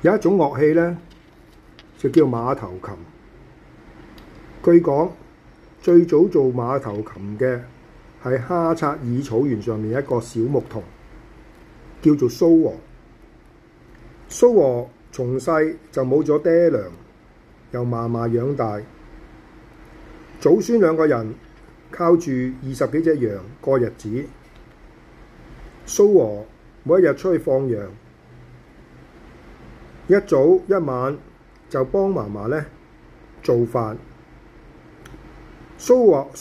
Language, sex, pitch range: Chinese, male, 120-170 Hz